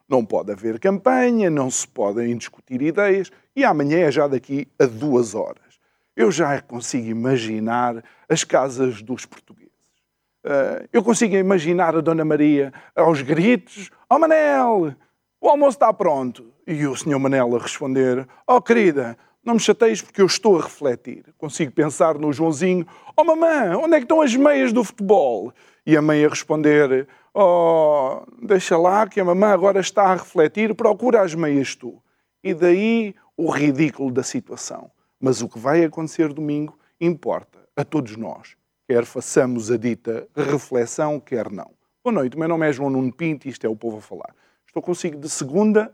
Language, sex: Portuguese, male